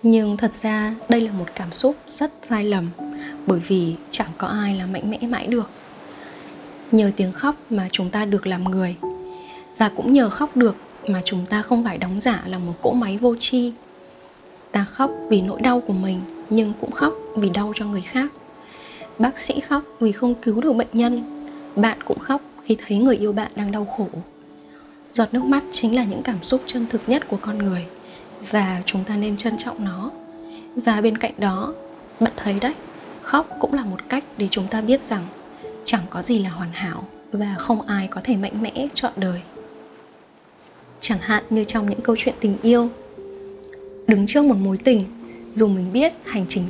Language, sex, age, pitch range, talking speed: Vietnamese, female, 10-29, 195-245 Hz, 200 wpm